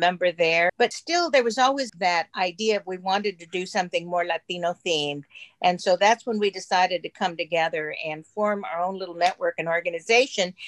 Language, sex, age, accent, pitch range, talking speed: English, female, 50-69, American, 170-220 Hz, 195 wpm